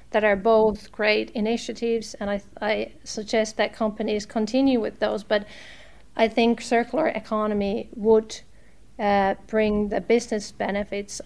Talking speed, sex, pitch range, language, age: 135 wpm, female, 205-225 Hz, English, 40-59